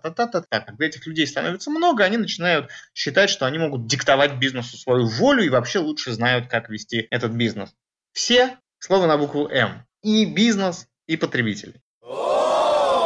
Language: Russian